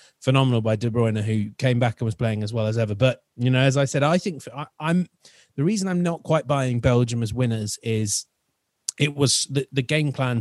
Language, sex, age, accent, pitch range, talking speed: English, male, 30-49, British, 115-145 Hz, 235 wpm